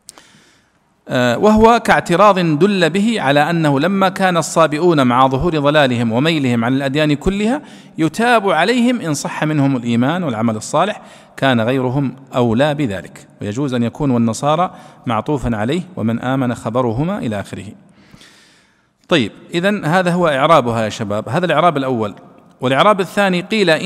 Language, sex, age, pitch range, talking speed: Arabic, male, 40-59, 125-180 Hz, 130 wpm